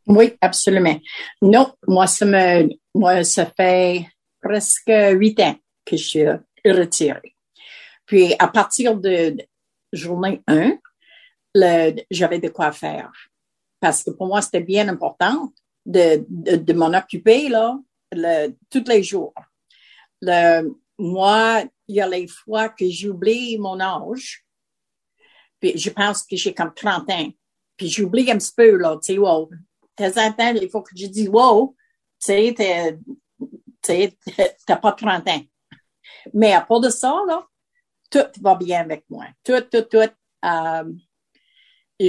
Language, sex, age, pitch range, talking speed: French, female, 50-69, 180-225 Hz, 145 wpm